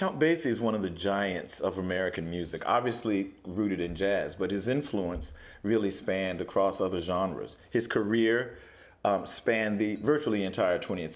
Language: English